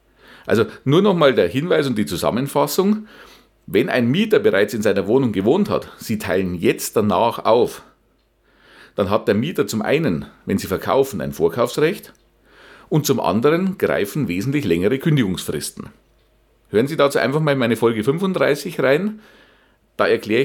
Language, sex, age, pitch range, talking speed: German, male, 40-59, 110-140 Hz, 155 wpm